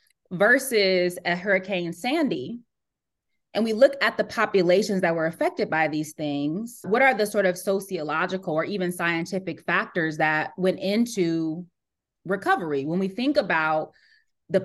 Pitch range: 175-220 Hz